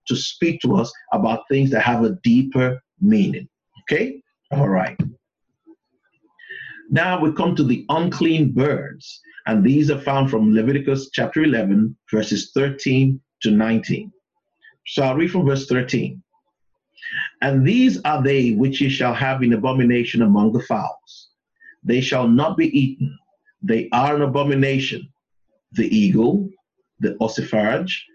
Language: English